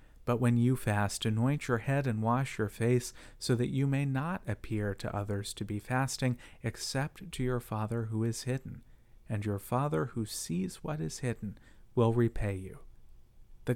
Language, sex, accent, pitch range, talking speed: English, male, American, 105-130 Hz, 180 wpm